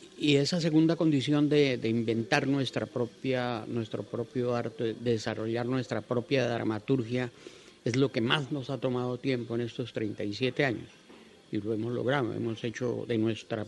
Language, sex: Spanish, male